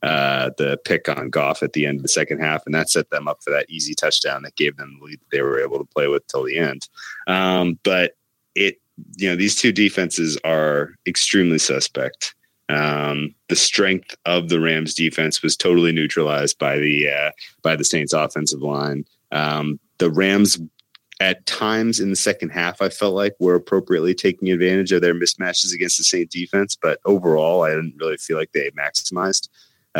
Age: 30-49